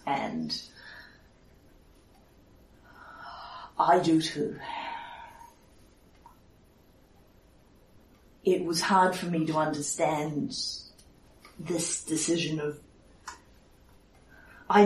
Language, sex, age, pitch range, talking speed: English, female, 40-59, 145-185 Hz, 60 wpm